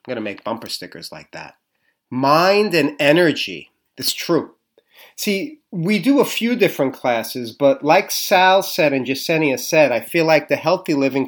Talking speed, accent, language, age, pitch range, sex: 175 wpm, American, English, 40-59, 125-185 Hz, male